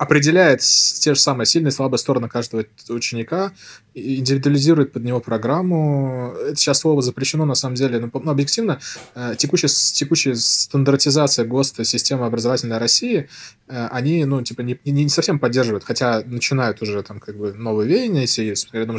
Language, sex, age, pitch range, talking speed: Russian, male, 20-39, 115-140 Hz, 150 wpm